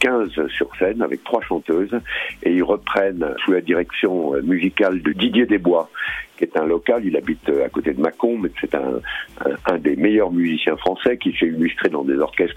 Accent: French